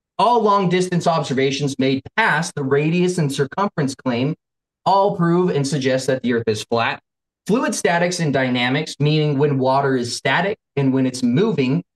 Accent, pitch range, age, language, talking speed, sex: American, 130-190 Hz, 20-39, English, 160 wpm, male